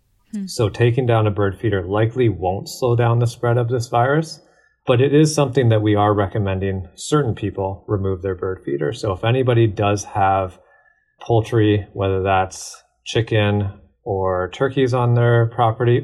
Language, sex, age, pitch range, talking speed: English, male, 30-49, 95-120 Hz, 160 wpm